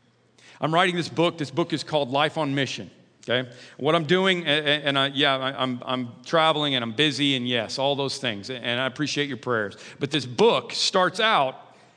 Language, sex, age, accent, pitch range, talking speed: English, male, 40-59, American, 135-175 Hz, 195 wpm